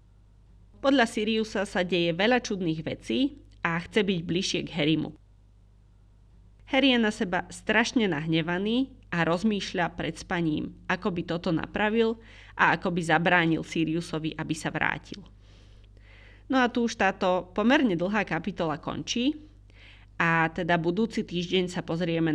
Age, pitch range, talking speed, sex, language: 30-49, 155-190 Hz, 135 wpm, female, Slovak